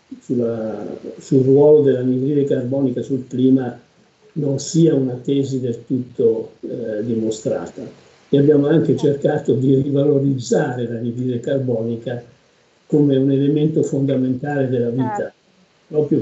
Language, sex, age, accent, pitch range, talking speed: Italian, male, 50-69, native, 130-155 Hz, 115 wpm